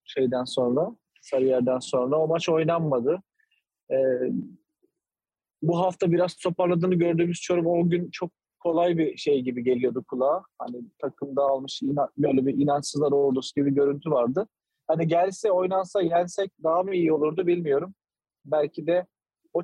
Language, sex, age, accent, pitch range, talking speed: Turkish, male, 30-49, native, 140-180 Hz, 140 wpm